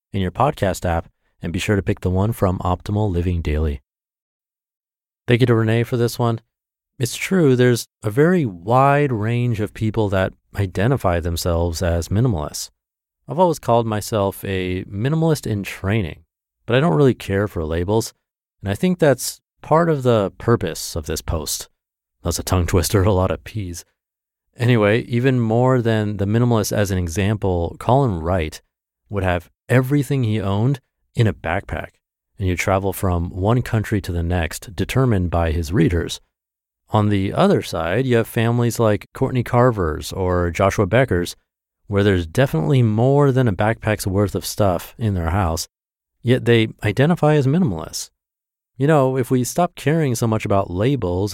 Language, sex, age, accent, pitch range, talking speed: English, male, 30-49, American, 85-120 Hz, 165 wpm